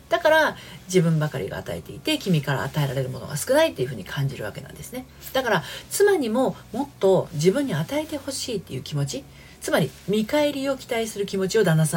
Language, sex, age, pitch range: Japanese, female, 40-59, 135-205 Hz